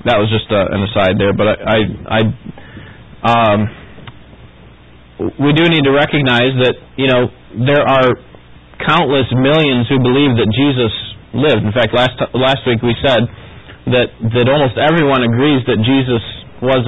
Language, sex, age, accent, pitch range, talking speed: English, male, 30-49, American, 110-135 Hz, 160 wpm